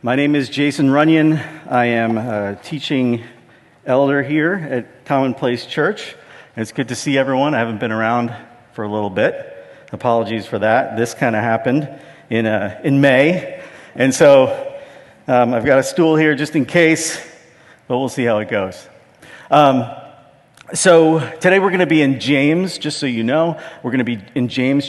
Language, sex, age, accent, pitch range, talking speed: English, male, 50-69, American, 115-150 Hz, 180 wpm